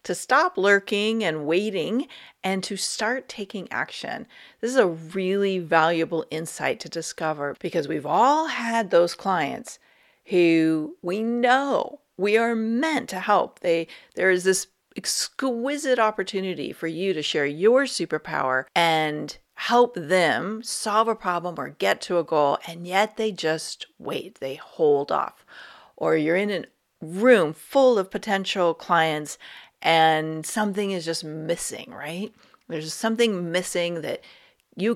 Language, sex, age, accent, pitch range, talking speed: English, female, 40-59, American, 160-215 Hz, 140 wpm